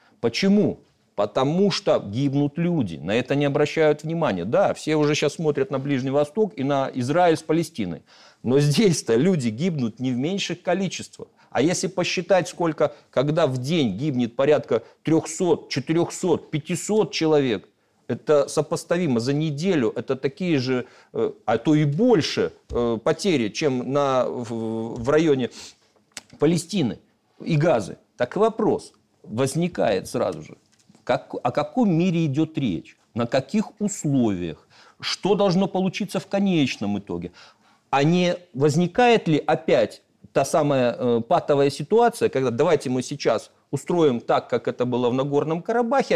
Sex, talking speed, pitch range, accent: male, 135 wpm, 135-175 Hz, native